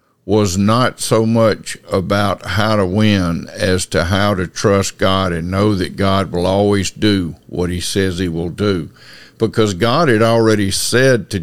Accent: American